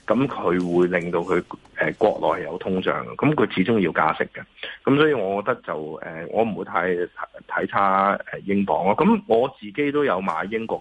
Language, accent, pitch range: Chinese, native, 95-135 Hz